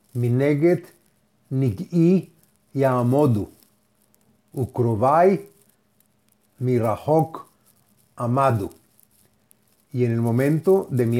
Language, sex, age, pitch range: Spanish, male, 40-59, 120-160 Hz